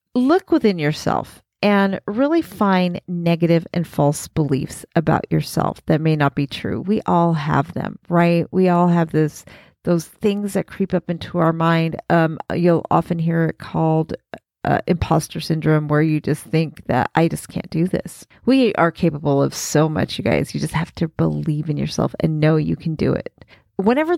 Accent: American